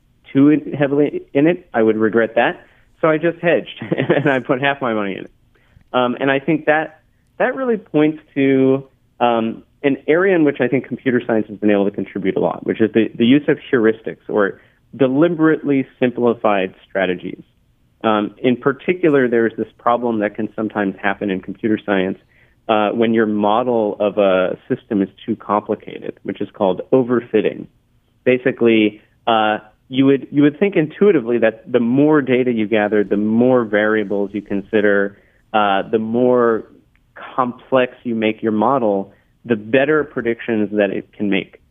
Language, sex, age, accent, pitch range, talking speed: English, male, 30-49, American, 105-135 Hz, 170 wpm